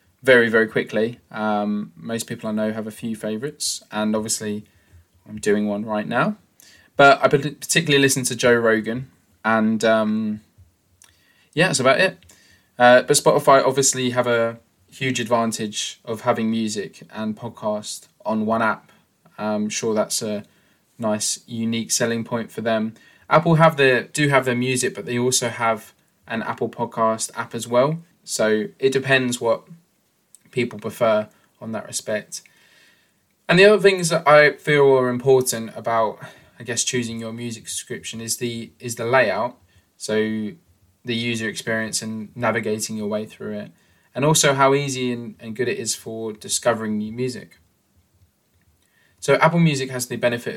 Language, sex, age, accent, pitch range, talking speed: English, male, 20-39, British, 110-130 Hz, 160 wpm